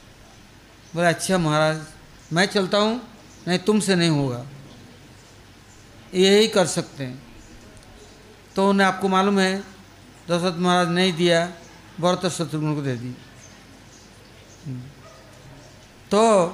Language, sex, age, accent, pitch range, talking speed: English, male, 60-79, Indian, 120-195 Hz, 110 wpm